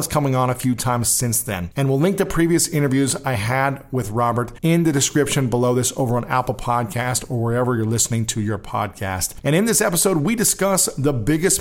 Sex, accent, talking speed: male, American, 210 wpm